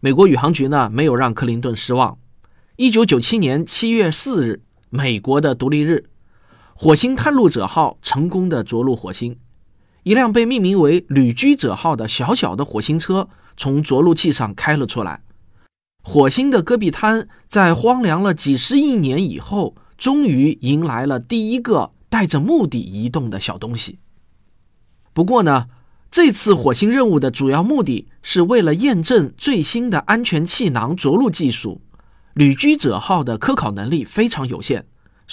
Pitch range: 120-190 Hz